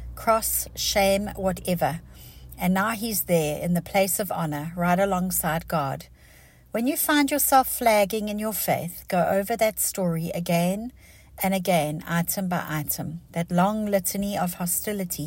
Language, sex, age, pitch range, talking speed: English, female, 60-79, 170-210 Hz, 150 wpm